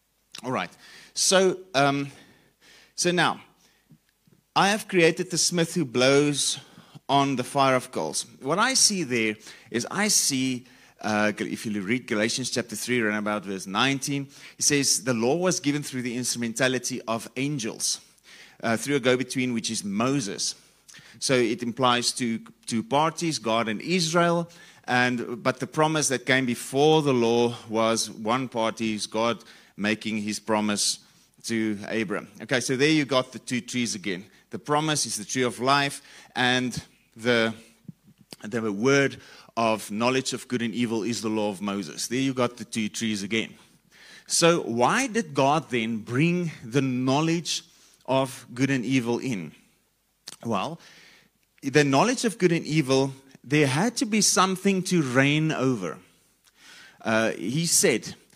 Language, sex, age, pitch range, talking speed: English, male, 30-49, 115-150 Hz, 155 wpm